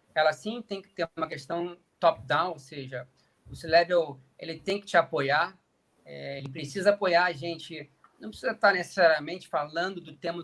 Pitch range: 160-200 Hz